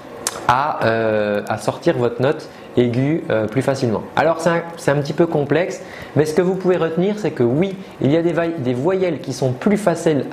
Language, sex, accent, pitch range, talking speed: French, male, French, 130-170 Hz, 205 wpm